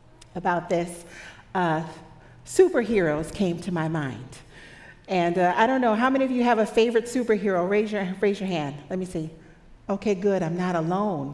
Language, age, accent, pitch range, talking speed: English, 50-69, American, 185-260 Hz, 175 wpm